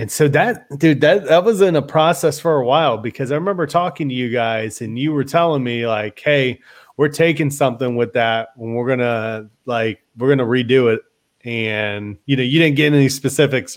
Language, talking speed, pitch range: English, 210 wpm, 120-160 Hz